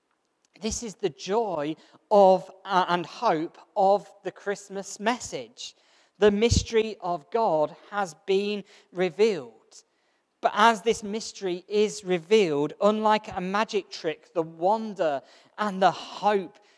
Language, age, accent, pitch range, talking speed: English, 40-59, British, 170-210 Hz, 120 wpm